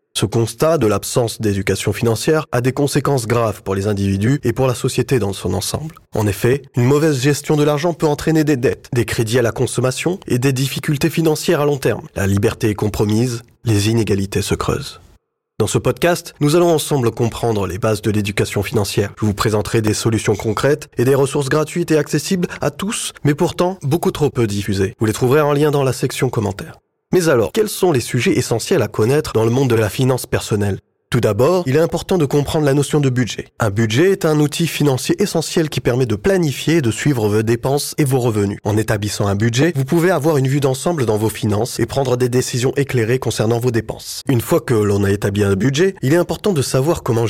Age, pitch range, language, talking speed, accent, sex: 20-39, 110-145 Hz, French, 220 wpm, French, male